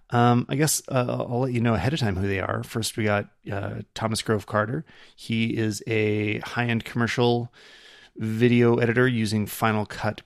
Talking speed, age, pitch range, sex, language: 180 wpm, 30-49, 110-125 Hz, male, English